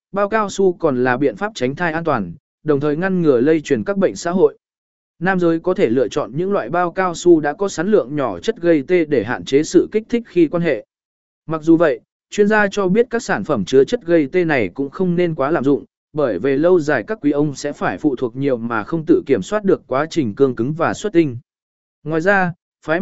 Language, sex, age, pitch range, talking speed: Vietnamese, male, 20-39, 145-195 Hz, 255 wpm